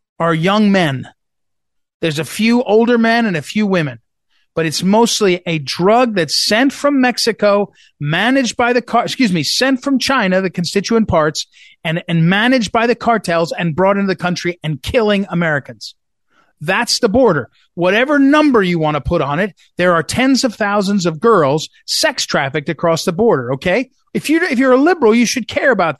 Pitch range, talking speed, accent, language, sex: 175-250 Hz, 185 wpm, American, English, male